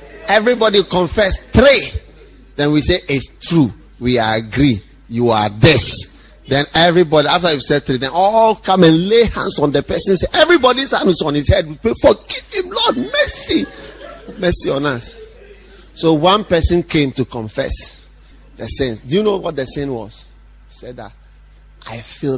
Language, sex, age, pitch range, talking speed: English, male, 30-49, 130-165 Hz, 170 wpm